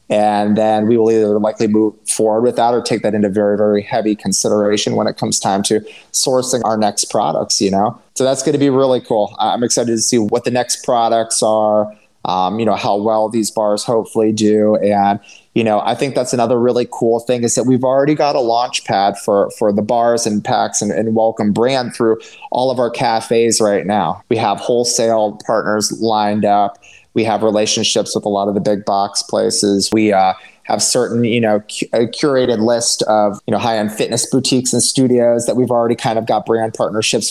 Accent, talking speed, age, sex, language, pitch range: American, 210 wpm, 30-49, male, English, 105-115 Hz